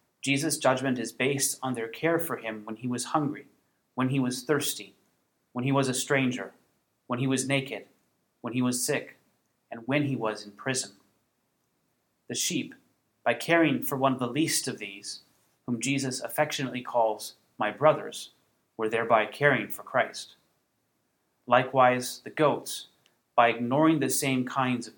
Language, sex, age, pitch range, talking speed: English, male, 30-49, 115-140 Hz, 160 wpm